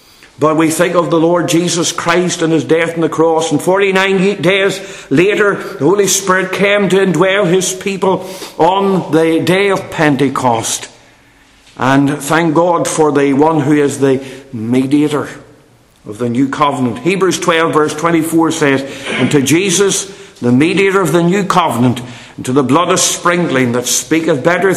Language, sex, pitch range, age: English, male, 140-185 Hz, 50-69